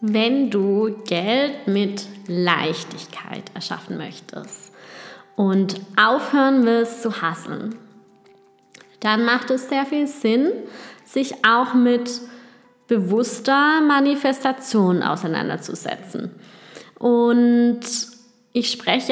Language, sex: German, female